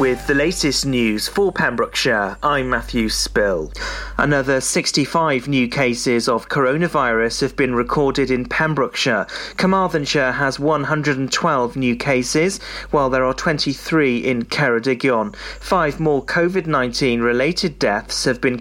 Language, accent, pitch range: English, British, 120-155 Hz